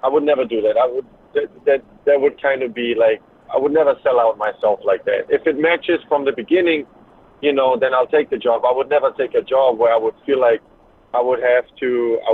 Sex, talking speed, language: male, 255 wpm, English